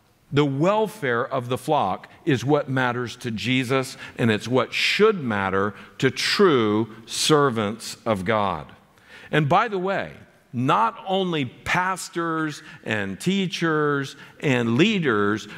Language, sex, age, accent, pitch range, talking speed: English, male, 50-69, American, 115-165 Hz, 120 wpm